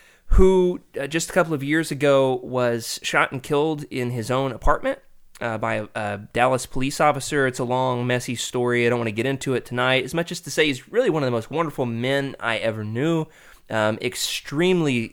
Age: 20-39